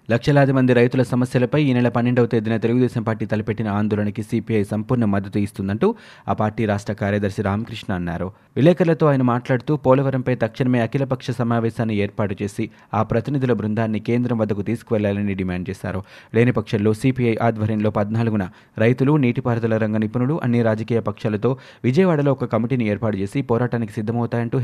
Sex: male